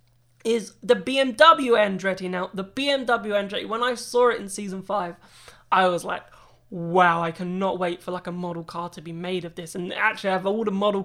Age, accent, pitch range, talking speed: 20-39, British, 175-220 Hz, 205 wpm